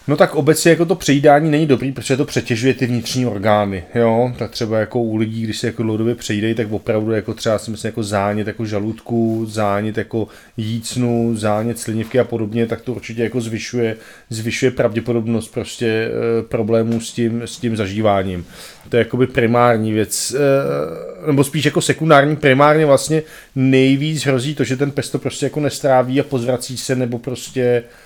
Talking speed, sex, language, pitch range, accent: 175 wpm, male, Czech, 115-130 Hz, native